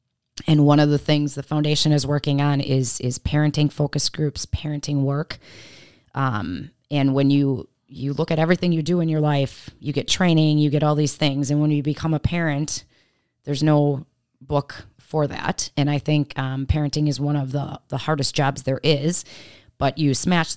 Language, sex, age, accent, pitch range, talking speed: English, female, 30-49, American, 135-150 Hz, 195 wpm